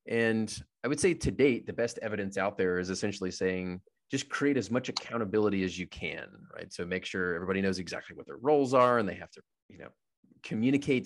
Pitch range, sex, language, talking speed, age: 95-125 Hz, male, English, 215 wpm, 30-49